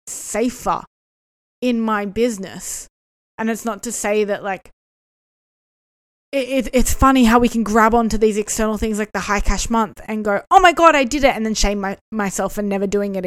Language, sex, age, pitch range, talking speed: English, female, 20-39, 200-230 Hz, 205 wpm